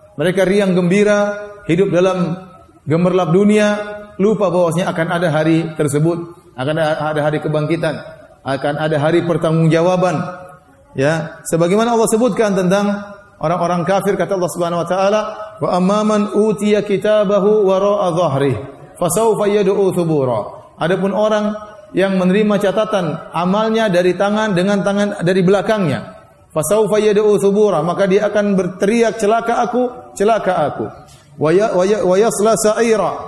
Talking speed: 120 wpm